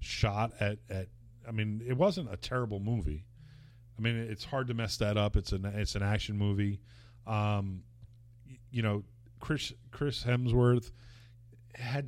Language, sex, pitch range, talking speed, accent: English, male, 100-115 Hz, 160 wpm, American